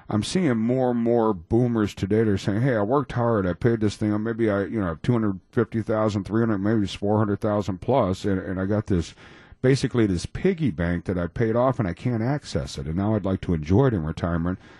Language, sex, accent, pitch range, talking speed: English, male, American, 95-120 Hz, 230 wpm